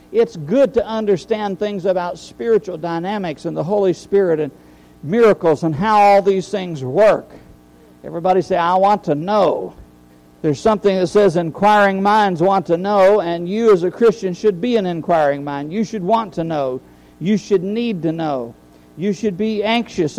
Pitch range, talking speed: 165-200 Hz, 175 wpm